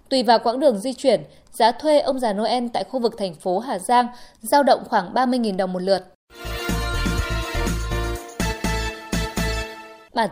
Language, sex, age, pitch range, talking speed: Vietnamese, female, 20-39, 210-275 Hz, 150 wpm